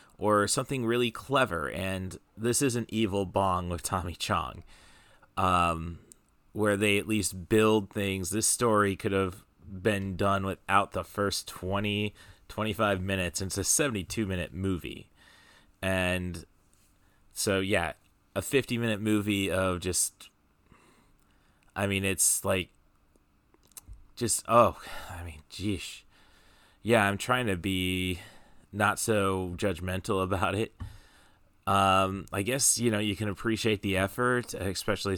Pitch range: 90-105 Hz